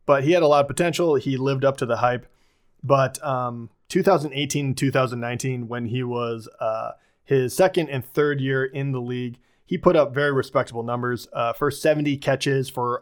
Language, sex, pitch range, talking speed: English, male, 125-145 Hz, 180 wpm